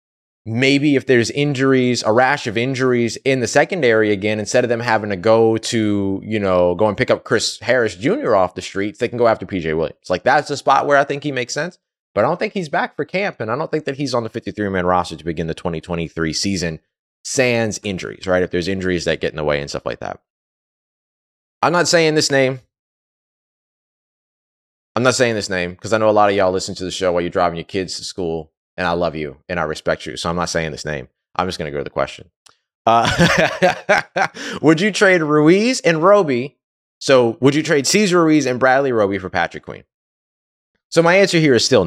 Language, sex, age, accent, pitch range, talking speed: English, male, 20-39, American, 90-140 Hz, 230 wpm